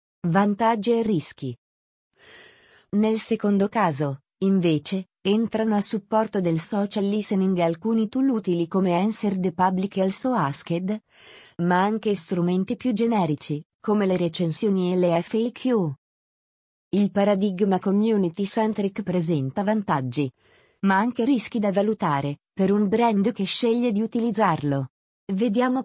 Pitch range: 170-220 Hz